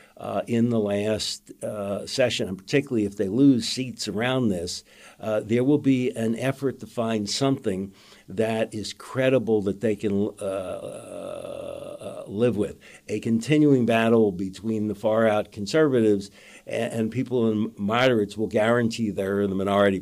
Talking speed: 155 wpm